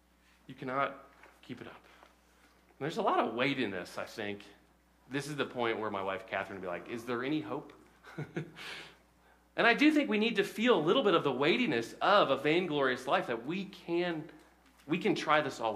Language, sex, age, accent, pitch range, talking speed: English, male, 30-49, American, 110-150 Hz, 205 wpm